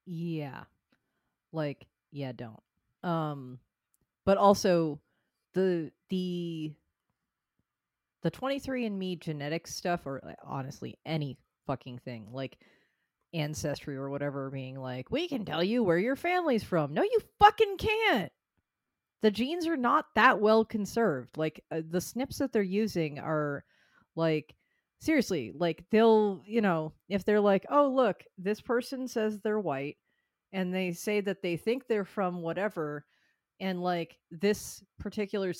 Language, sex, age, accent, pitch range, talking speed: English, female, 30-49, American, 145-200 Hz, 135 wpm